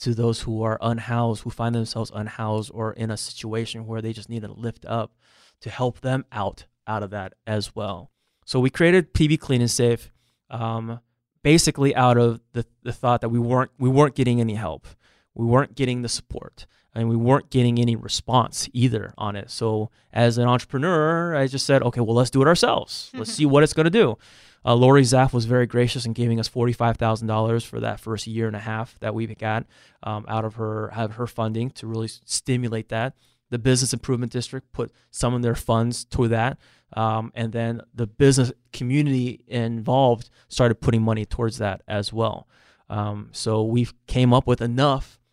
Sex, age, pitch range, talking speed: male, 20-39, 110-130 Hz, 195 wpm